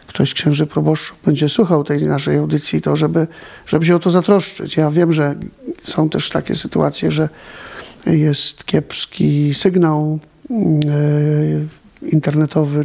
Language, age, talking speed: Polish, 50-69, 125 wpm